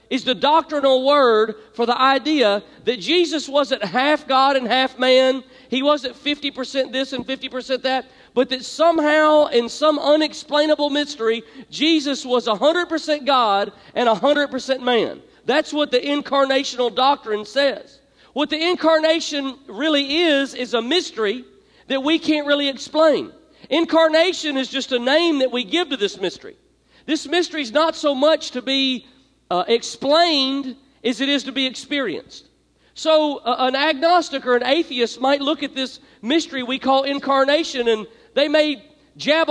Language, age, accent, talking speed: English, 40-59, American, 155 wpm